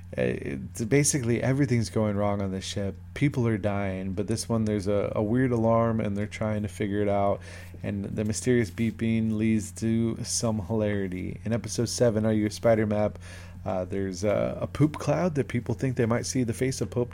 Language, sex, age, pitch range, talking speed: English, male, 20-39, 95-115 Hz, 205 wpm